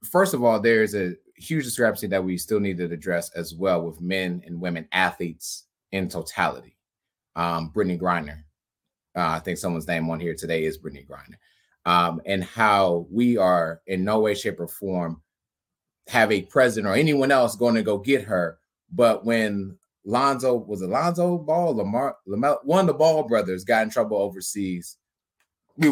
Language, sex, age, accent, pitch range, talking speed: English, male, 30-49, American, 85-125 Hz, 180 wpm